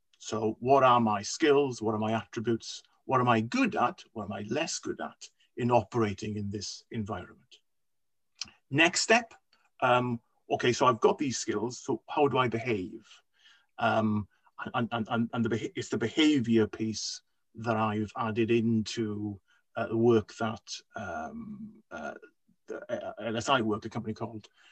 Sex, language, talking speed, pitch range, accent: male, English, 150 wpm, 110-130 Hz, British